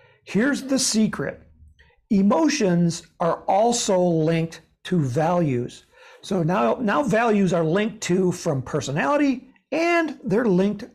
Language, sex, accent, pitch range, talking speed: English, male, American, 165-250 Hz, 115 wpm